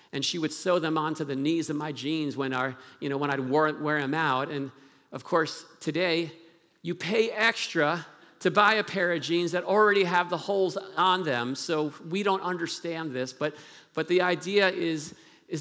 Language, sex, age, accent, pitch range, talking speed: English, male, 50-69, American, 150-180 Hz, 195 wpm